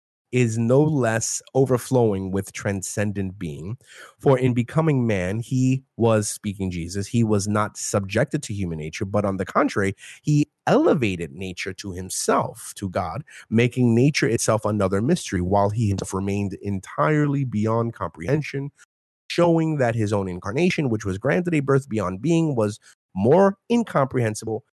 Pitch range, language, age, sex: 95-130 Hz, English, 30-49, male